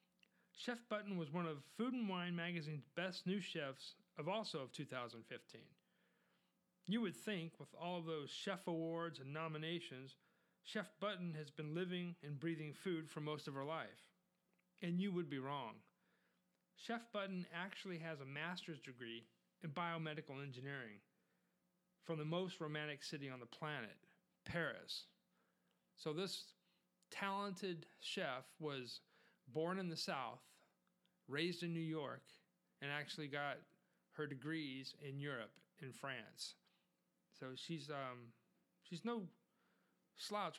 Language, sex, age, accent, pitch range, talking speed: English, male, 40-59, American, 140-180 Hz, 135 wpm